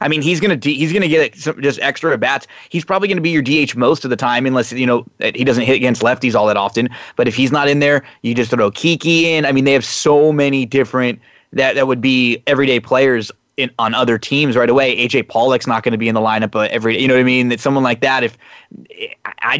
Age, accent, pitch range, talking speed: 20-39, American, 120-150 Hz, 255 wpm